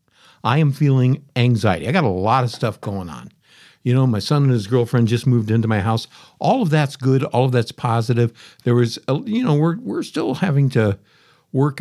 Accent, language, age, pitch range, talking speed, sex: American, English, 60-79, 115-150 Hz, 220 wpm, male